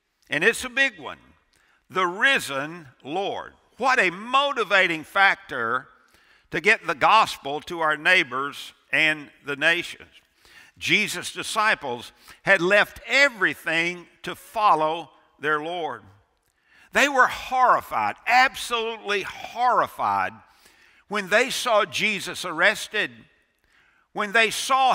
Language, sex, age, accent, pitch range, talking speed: English, male, 60-79, American, 165-230 Hz, 105 wpm